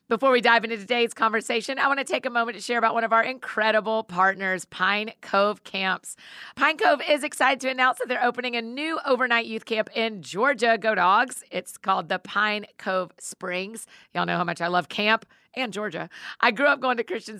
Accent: American